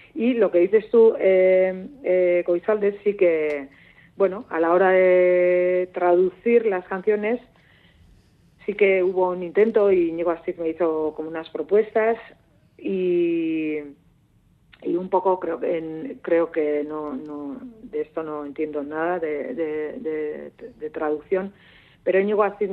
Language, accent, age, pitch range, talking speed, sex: Spanish, Spanish, 40-59, 150-190 Hz, 145 wpm, female